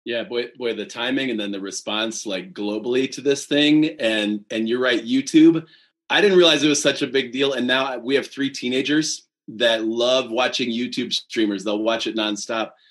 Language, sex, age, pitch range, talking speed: English, male, 30-49, 115-145 Hz, 200 wpm